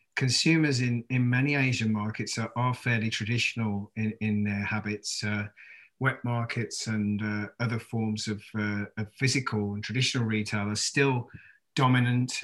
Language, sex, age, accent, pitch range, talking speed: English, male, 40-59, British, 110-125 Hz, 150 wpm